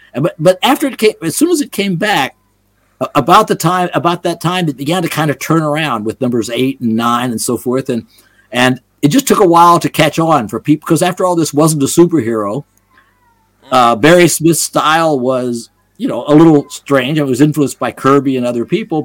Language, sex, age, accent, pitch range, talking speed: English, male, 50-69, American, 115-150 Hz, 215 wpm